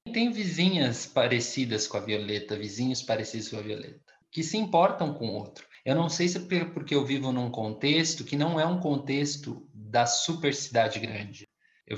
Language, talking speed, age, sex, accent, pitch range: Portuguese, 185 wpm, 20-39, male, Brazilian, 125-180 Hz